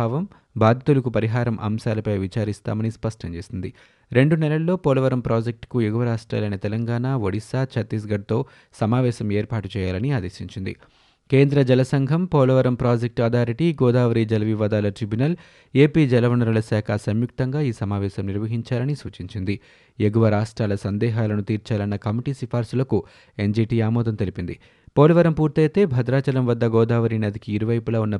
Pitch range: 105-130 Hz